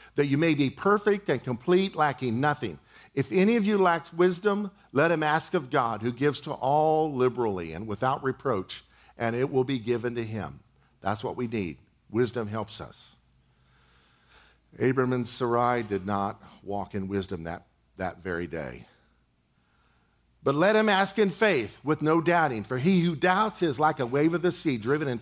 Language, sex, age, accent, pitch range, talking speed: English, male, 50-69, American, 100-150 Hz, 180 wpm